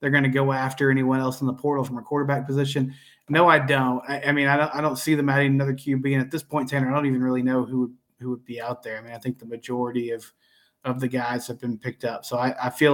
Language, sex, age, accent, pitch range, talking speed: English, male, 20-39, American, 125-145 Hz, 290 wpm